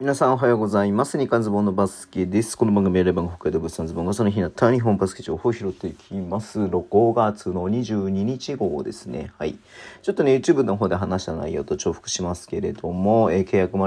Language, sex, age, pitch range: Japanese, male, 40-59, 85-105 Hz